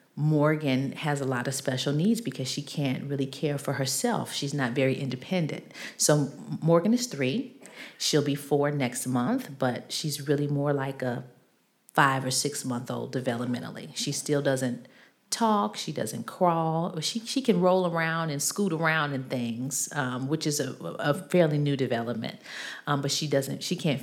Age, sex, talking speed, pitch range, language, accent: 40-59, female, 170 wpm, 135-165 Hz, English, American